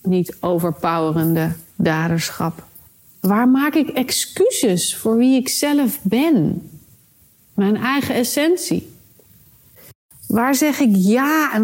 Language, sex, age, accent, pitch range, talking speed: Dutch, female, 40-59, Dutch, 175-255 Hz, 105 wpm